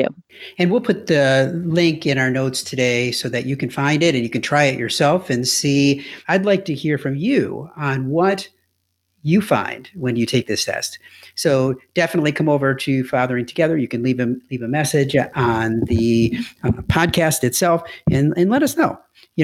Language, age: English, 50-69